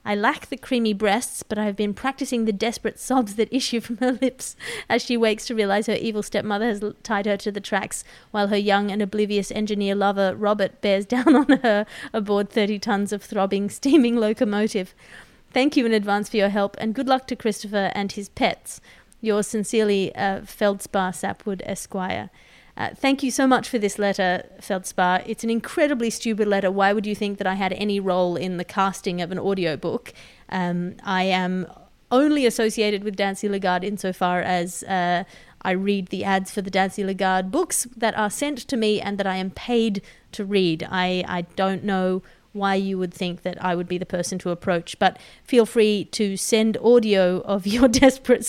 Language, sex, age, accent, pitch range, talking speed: English, female, 30-49, Australian, 190-230 Hz, 195 wpm